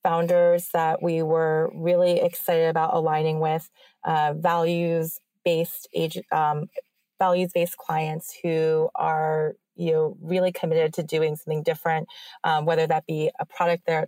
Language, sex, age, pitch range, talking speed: English, female, 30-49, 155-175 Hz, 135 wpm